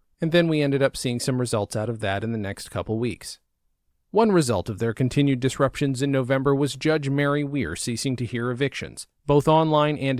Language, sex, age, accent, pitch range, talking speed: English, male, 40-59, American, 110-145 Hz, 205 wpm